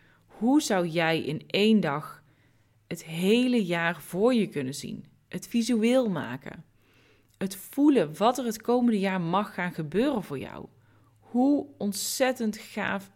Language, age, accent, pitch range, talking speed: Dutch, 20-39, Dutch, 150-195 Hz, 140 wpm